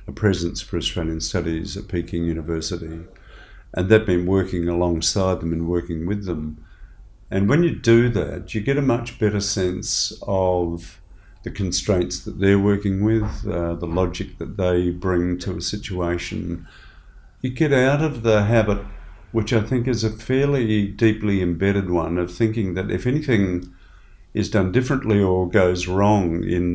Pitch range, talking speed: 90-110 Hz, 160 wpm